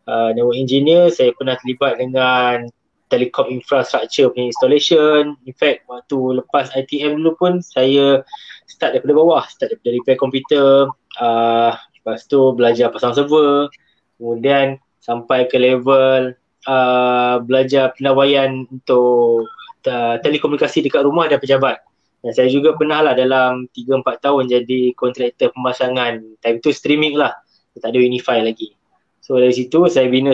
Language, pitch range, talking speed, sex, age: Malay, 125-145 Hz, 135 wpm, male, 20-39